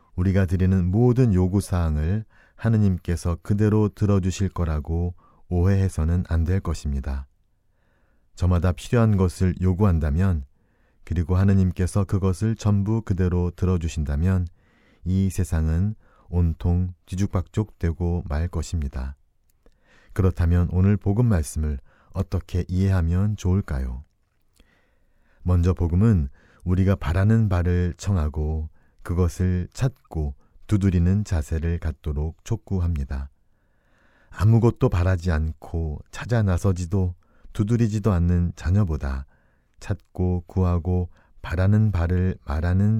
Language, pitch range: Korean, 80-100 Hz